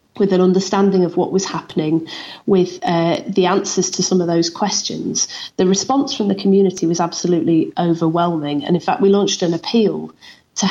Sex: female